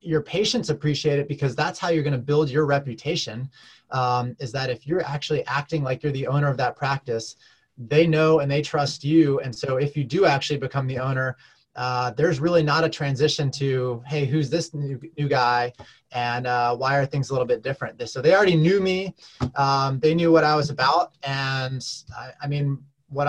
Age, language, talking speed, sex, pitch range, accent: 20-39, English, 210 wpm, male, 130-155 Hz, American